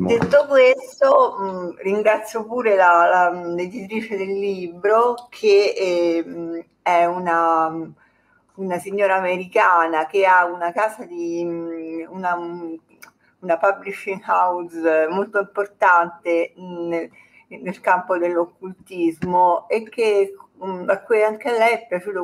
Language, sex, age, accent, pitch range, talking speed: Italian, female, 50-69, native, 170-215 Hz, 110 wpm